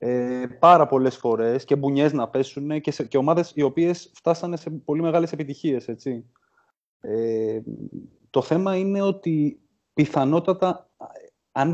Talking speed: 135 wpm